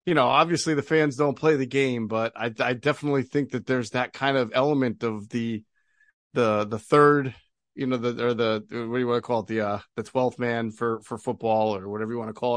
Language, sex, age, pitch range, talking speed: English, male, 40-59, 120-170 Hz, 245 wpm